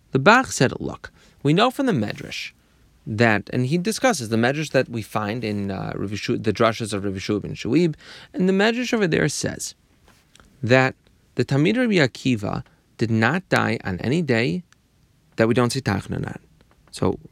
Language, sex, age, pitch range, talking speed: English, male, 30-49, 105-140 Hz, 175 wpm